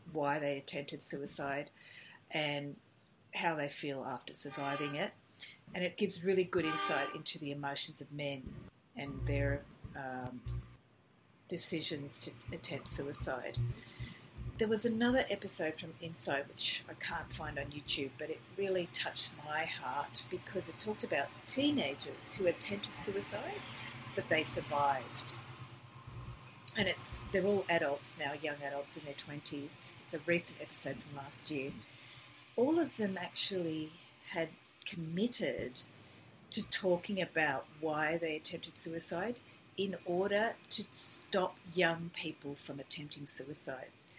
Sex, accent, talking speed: female, Australian, 135 wpm